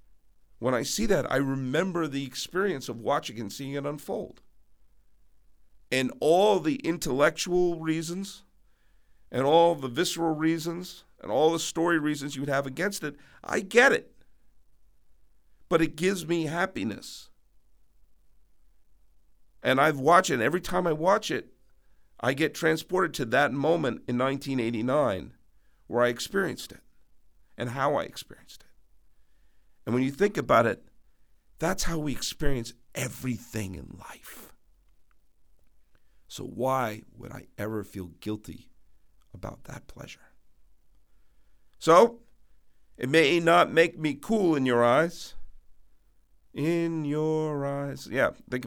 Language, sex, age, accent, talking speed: English, male, 50-69, American, 130 wpm